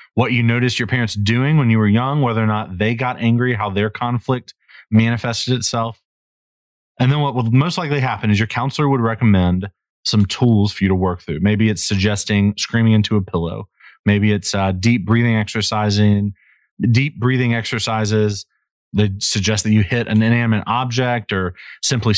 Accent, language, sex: American, English, male